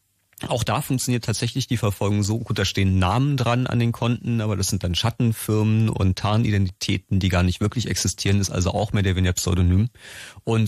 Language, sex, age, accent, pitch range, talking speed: German, male, 30-49, German, 95-115 Hz, 195 wpm